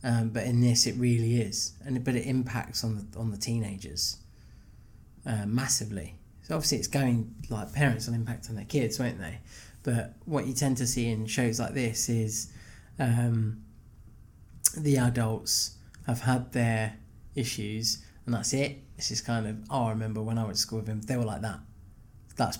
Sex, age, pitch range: male, 20-39, 110-125 Hz